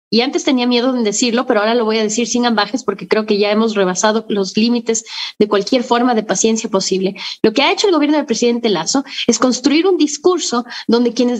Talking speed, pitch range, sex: 225 wpm, 220-305 Hz, female